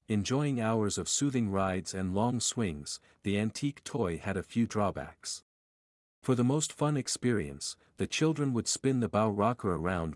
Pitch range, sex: 95-125 Hz, male